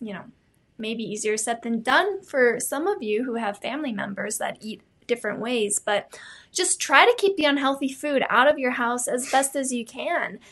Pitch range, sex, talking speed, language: 220-275 Hz, female, 205 wpm, English